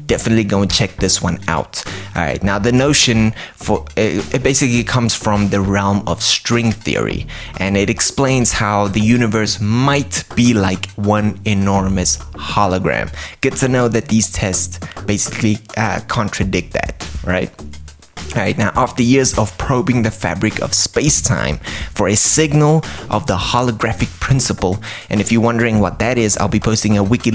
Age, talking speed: 20-39, 165 wpm